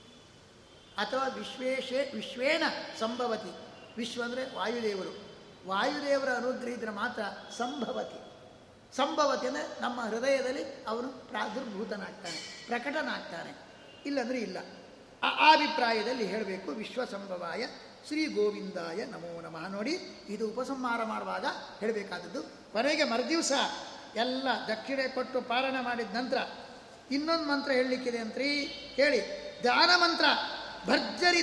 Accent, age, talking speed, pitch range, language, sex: native, 20-39, 95 wpm, 230-285 Hz, Kannada, male